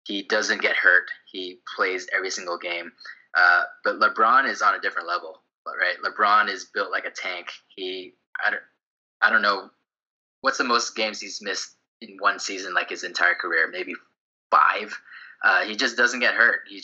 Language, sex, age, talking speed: English, male, 20-39, 185 wpm